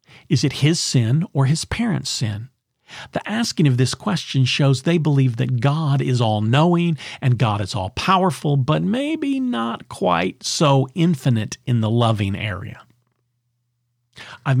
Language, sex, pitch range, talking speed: English, male, 120-160 Hz, 145 wpm